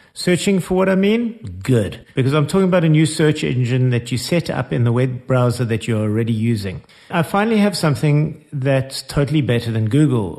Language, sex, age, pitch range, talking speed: English, male, 50-69, 115-150 Hz, 200 wpm